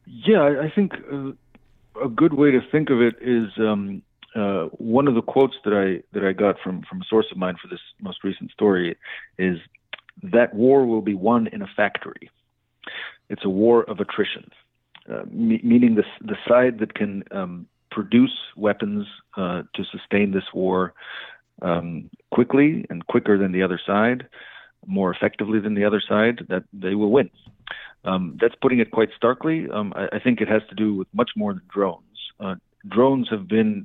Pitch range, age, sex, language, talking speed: 95-125 Hz, 40-59, male, English, 185 wpm